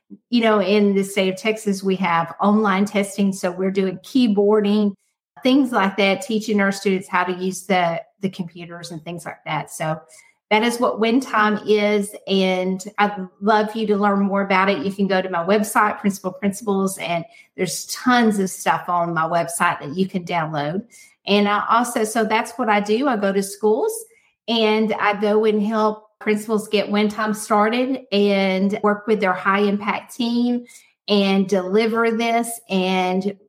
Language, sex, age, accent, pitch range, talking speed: English, female, 40-59, American, 195-220 Hz, 180 wpm